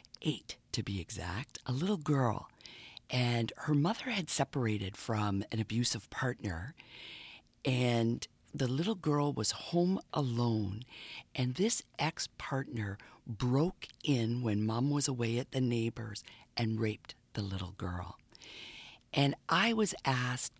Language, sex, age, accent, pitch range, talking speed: English, female, 50-69, American, 110-140 Hz, 130 wpm